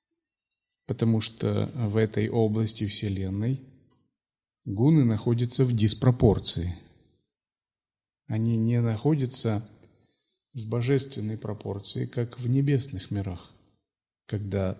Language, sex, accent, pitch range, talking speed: Russian, male, native, 100-125 Hz, 85 wpm